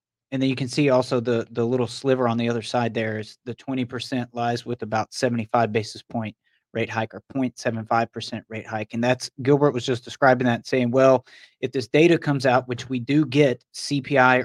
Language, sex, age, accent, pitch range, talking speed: English, male, 30-49, American, 120-140 Hz, 210 wpm